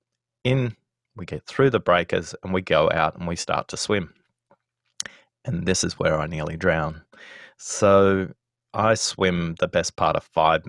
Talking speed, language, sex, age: 170 wpm, English, male, 30-49